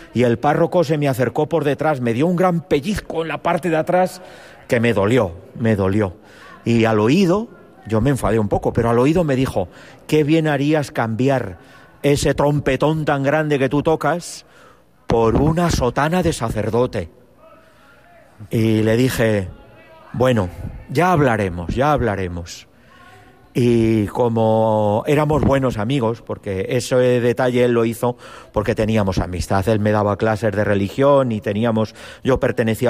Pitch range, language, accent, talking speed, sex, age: 110-140 Hz, Spanish, Spanish, 155 wpm, male, 40-59